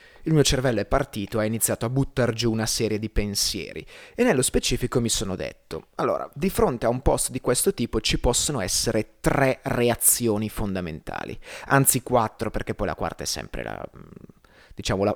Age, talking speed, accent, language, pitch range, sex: 30-49, 180 wpm, native, Italian, 110-135 Hz, male